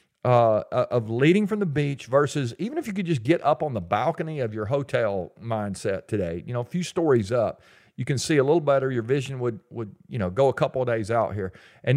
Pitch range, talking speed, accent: 120-150 Hz, 240 wpm, American